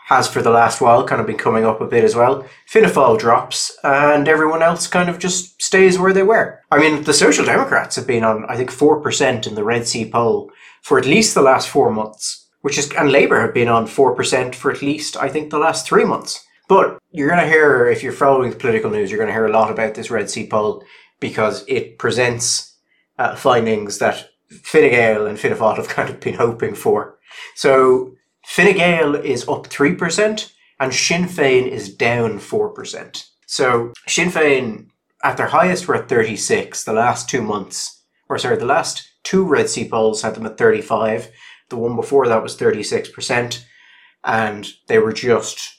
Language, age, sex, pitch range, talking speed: English, 30-49, male, 120-195 Hz, 195 wpm